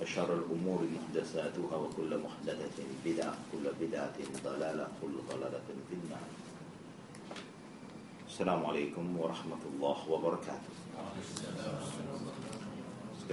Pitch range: 80-90 Hz